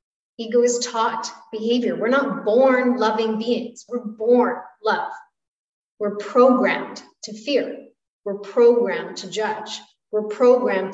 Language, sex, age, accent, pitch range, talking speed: English, female, 30-49, American, 210-250 Hz, 120 wpm